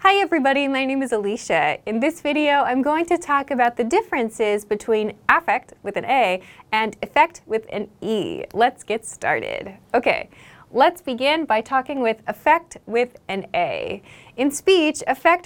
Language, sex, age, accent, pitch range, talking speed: English, female, 20-39, American, 210-295 Hz, 165 wpm